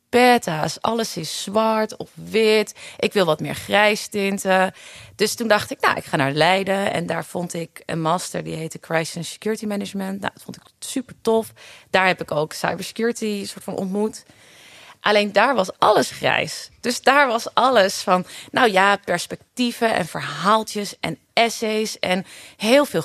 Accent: Dutch